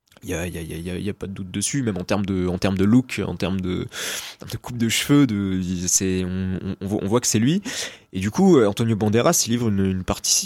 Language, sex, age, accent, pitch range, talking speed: French, male, 20-39, French, 100-120 Hz, 265 wpm